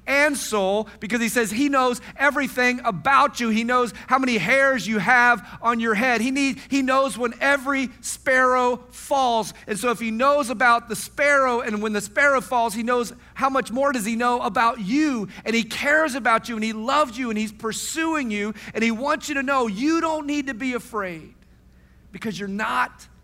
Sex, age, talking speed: male, 40-59, 200 wpm